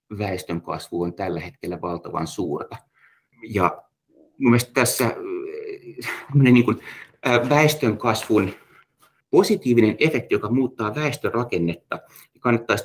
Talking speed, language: 80 wpm, Finnish